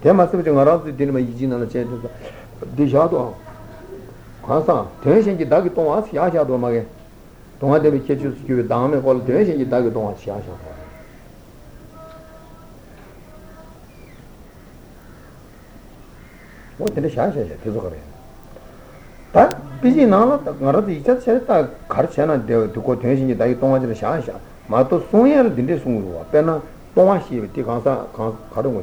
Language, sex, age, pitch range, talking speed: Italian, male, 60-79, 110-155 Hz, 125 wpm